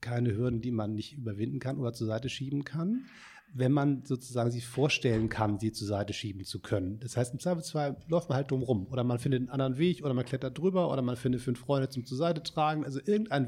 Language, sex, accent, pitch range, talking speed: German, male, German, 120-140 Hz, 240 wpm